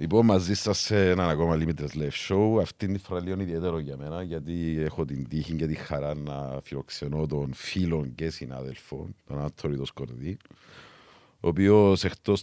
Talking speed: 165 wpm